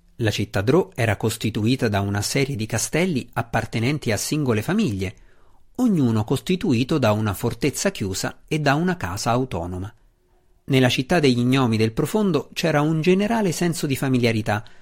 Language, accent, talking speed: Italian, native, 145 wpm